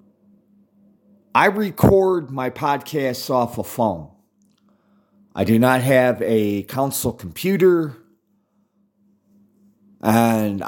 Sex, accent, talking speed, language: male, American, 85 wpm, English